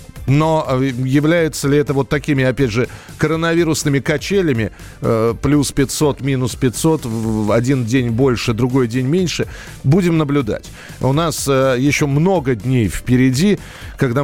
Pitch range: 125-155 Hz